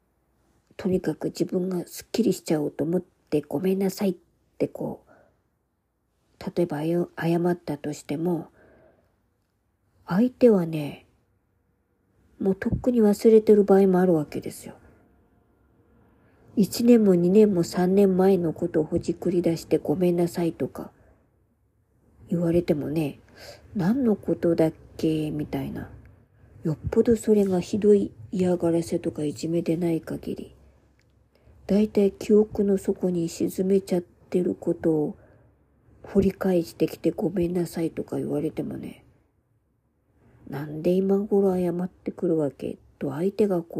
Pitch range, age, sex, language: 155-190 Hz, 50-69, male, Japanese